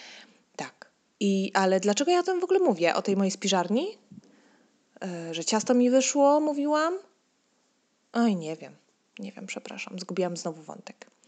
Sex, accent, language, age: female, native, Polish, 20-39